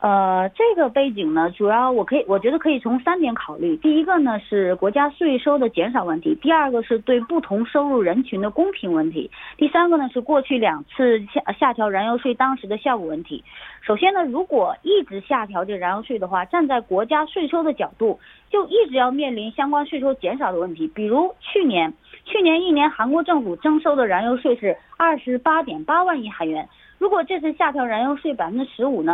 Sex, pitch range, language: female, 225-330 Hz, Korean